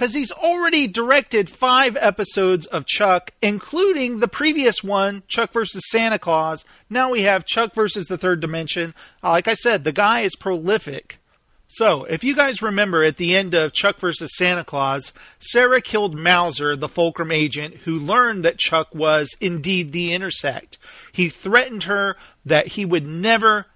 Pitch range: 165-225 Hz